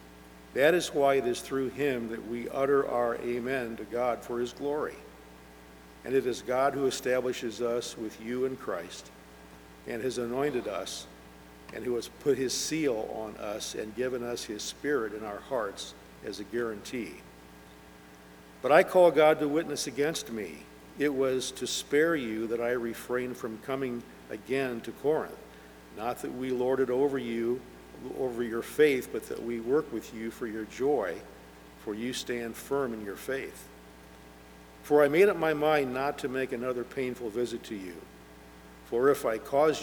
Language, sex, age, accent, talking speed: English, male, 50-69, American, 175 wpm